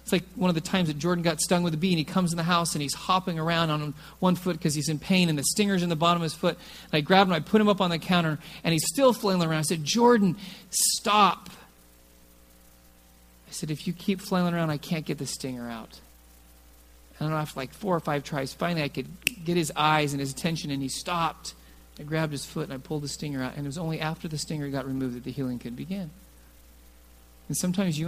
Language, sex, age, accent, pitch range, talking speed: English, male, 40-59, American, 125-170 Hz, 250 wpm